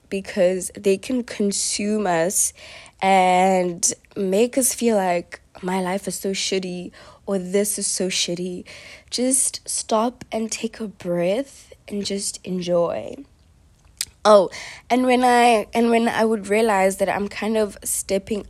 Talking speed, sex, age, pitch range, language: 140 wpm, female, 20-39, 175-215 Hz, English